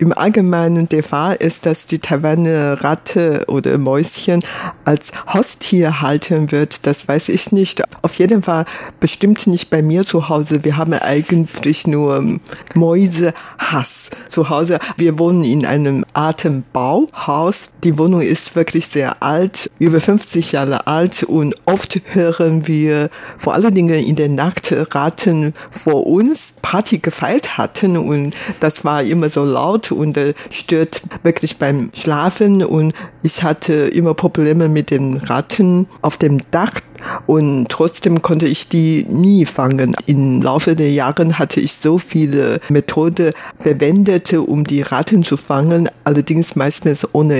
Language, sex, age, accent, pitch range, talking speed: German, female, 50-69, German, 145-175 Hz, 145 wpm